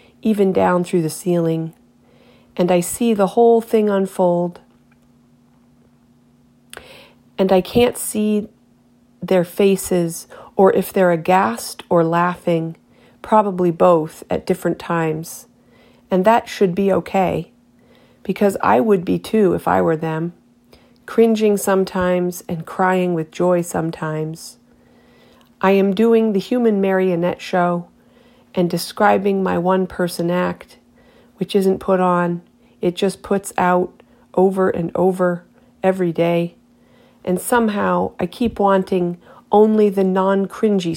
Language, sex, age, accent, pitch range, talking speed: English, female, 40-59, American, 170-200 Hz, 120 wpm